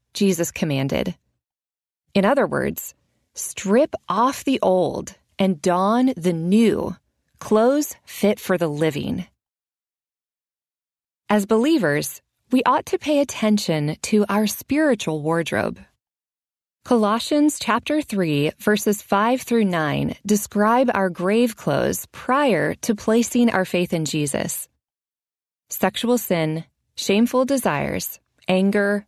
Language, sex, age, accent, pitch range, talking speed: English, female, 20-39, American, 180-230 Hz, 105 wpm